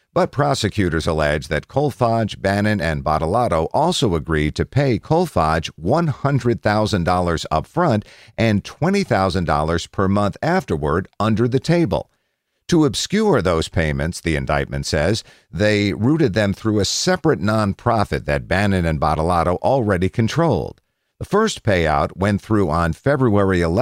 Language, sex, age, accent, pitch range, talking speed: English, male, 50-69, American, 80-120 Hz, 130 wpm